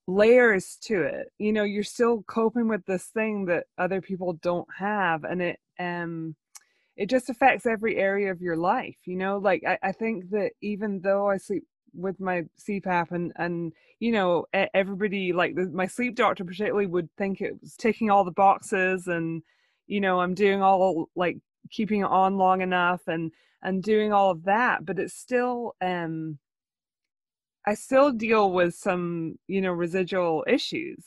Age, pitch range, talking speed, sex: 20-39, 175-215 Hz, 170 wpm, female